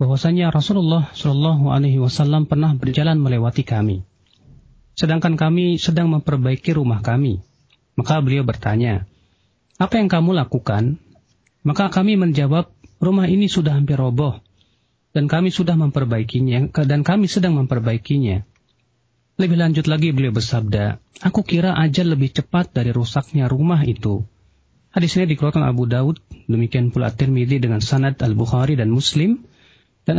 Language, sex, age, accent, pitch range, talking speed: Indonesian, male, 40-59, native, 120-165 Hz, 130 wpm